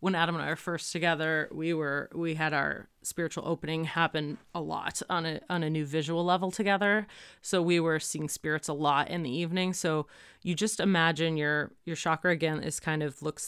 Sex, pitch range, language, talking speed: female, 155-185 Hz, English, 210 wpm